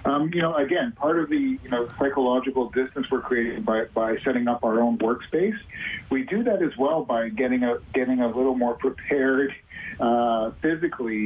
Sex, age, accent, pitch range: male, 40-59, American, 115-155 Hz